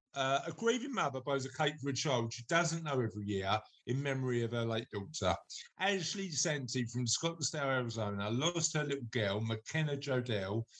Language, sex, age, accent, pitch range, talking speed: English, male, 50-69, British, 115-150 Hz, 180 wpm